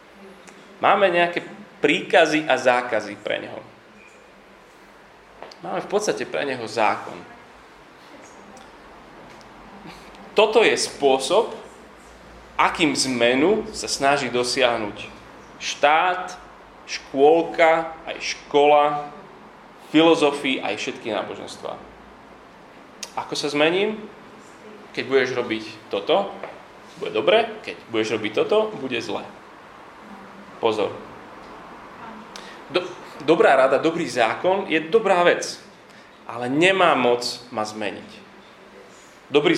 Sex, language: male, Slovak